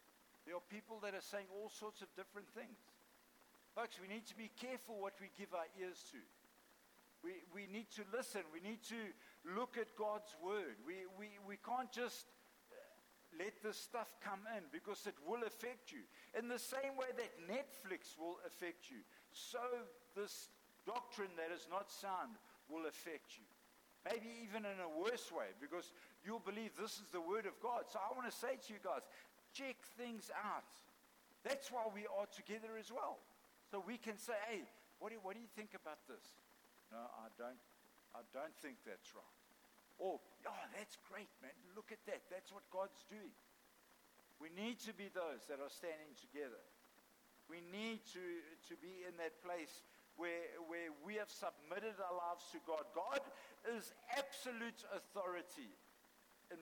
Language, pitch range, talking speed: English, 180-235 Hz, 175 wpm